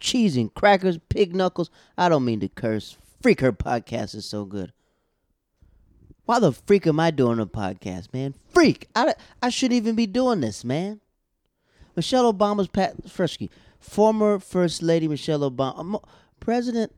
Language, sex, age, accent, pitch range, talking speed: English, male, 20-39, American, 110-145 Hz, 155 wpm